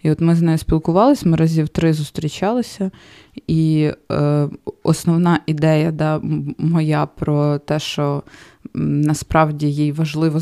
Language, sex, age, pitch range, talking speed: Ukrainian, female, 20-39, 150-170 Hz, 125 wpm